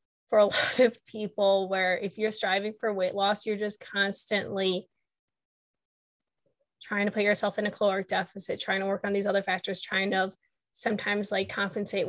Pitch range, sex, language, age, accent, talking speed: 185-225 Hz, female, English, 20-39, American, 175 wpm